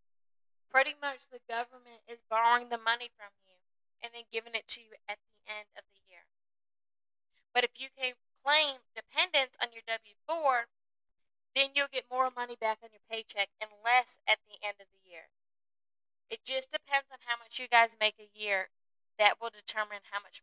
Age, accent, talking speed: 20-39, American, 190 wpm